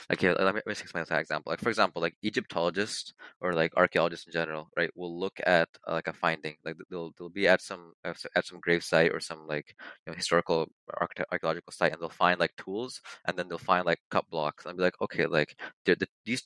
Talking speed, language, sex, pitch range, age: 225 wpm, English, male, 85-100 Hz, 20-39